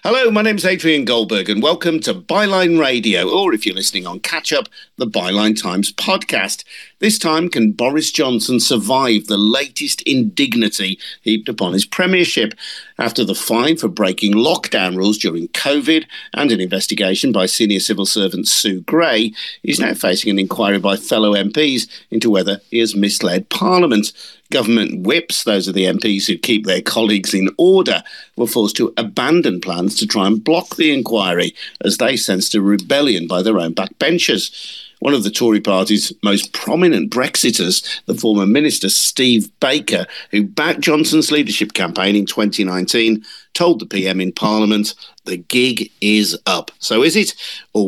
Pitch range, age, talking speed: 100-125 Hz, 50-69, 165 wpm